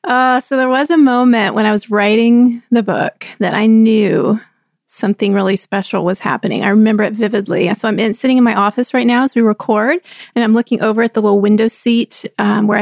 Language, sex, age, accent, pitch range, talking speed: English, female, 30-49, American, 210-245 Hz, 215 wpm